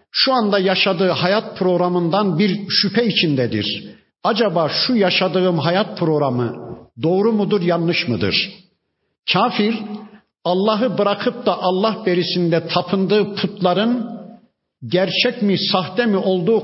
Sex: male